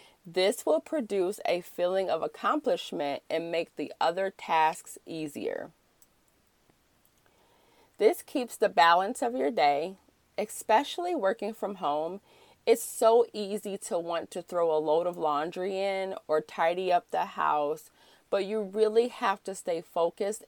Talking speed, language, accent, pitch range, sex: 140 wpm, English, American, 175-235 Hz, female